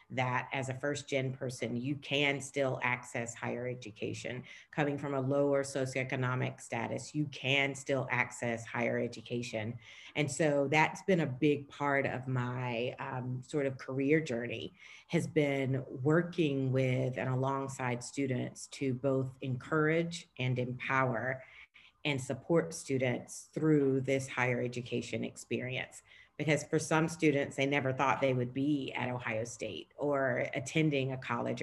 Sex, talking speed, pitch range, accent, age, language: female, 140 wpm, 130-155 Hz, American, 40-59, English